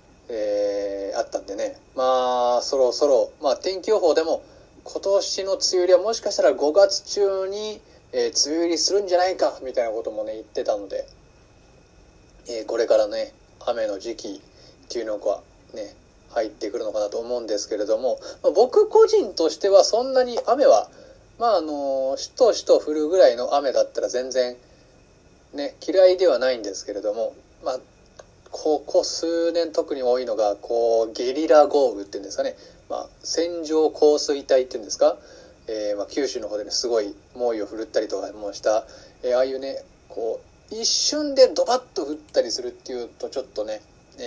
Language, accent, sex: Japanese, native, male